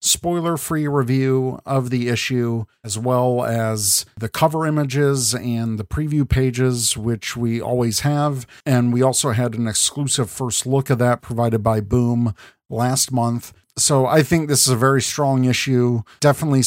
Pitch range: 115-130 Hz